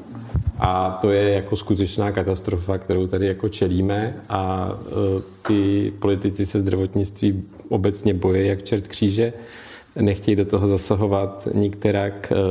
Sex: male